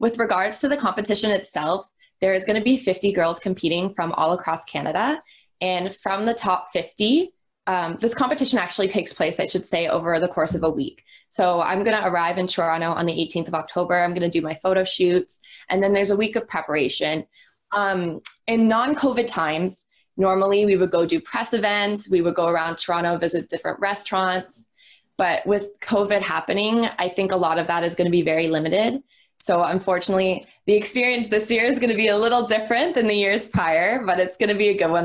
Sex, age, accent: female, 20-39, American